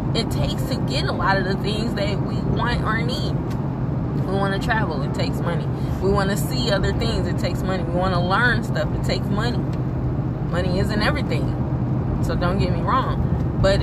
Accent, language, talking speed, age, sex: American, English, 205 wpm, 20-39, female